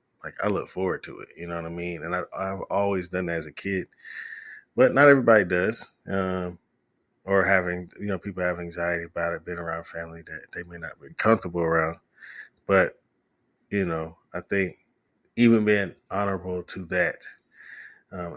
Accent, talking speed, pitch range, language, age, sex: American, 175 wpm, 85-105 Hz, English, 20-39, male